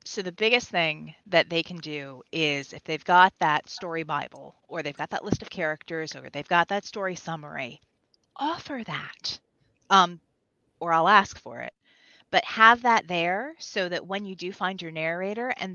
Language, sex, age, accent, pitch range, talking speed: English, female, 30-49, American, 160-200 Hz, 185 wpm